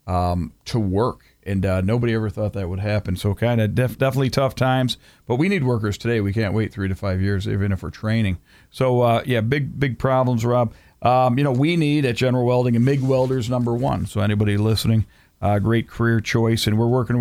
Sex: male